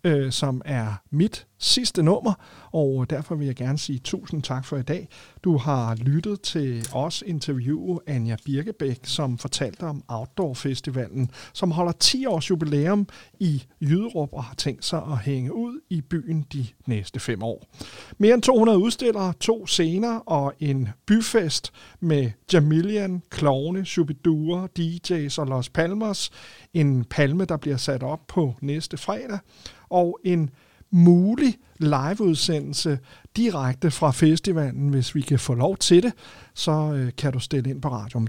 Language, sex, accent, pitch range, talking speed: Danish, male, native, 130-175 Hz, 150 wpm